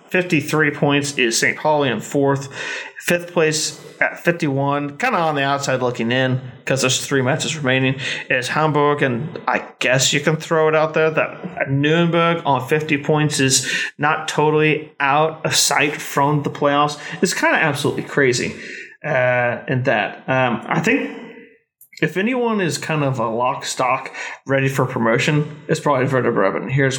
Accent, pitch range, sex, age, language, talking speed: American, 135-165 Hz, male, 30-49, English, 165 wpm